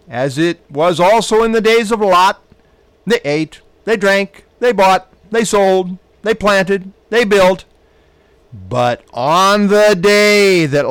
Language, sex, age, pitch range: English, male, 50-69, 160-200 Hz